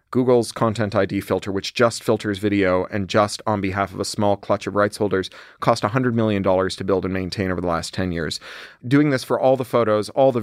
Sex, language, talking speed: male, English, 225 wpm